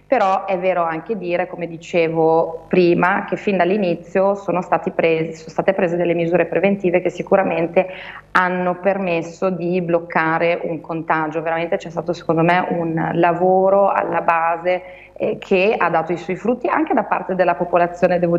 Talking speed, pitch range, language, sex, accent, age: 165 wpm, 170-185 Hz, Italian, female, native, 30-49